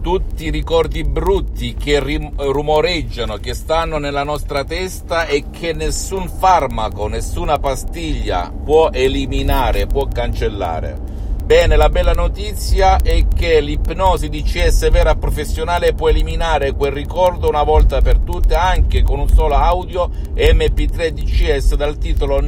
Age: 50-69